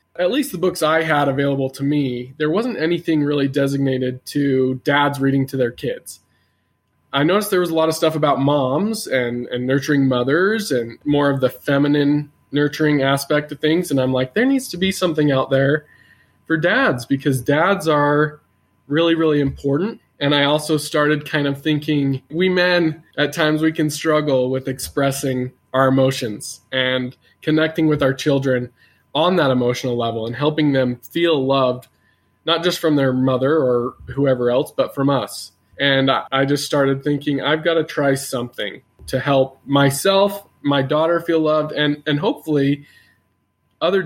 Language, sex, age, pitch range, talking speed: English, male, 20-39, 130-155 Hz, 170 wpm